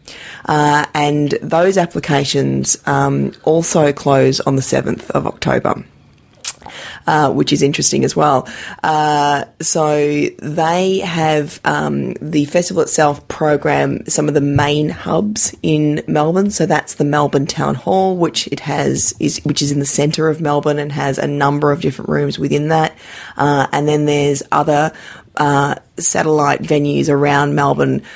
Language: English